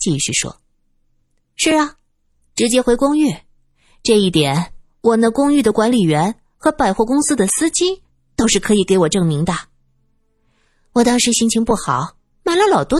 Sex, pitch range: female, 155-250 Hz